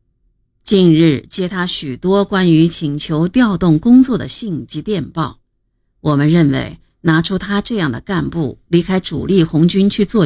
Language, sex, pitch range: Chinese, female, 145-195 Hz